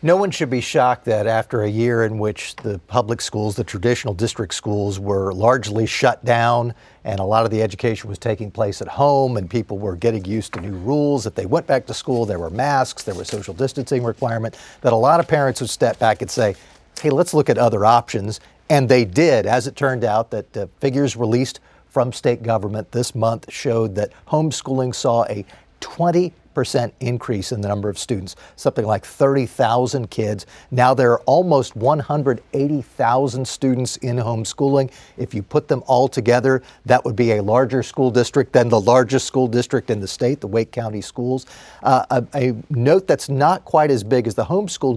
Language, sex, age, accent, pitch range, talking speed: English, male, 40-59, American, 110-135 Hz, 200 wpm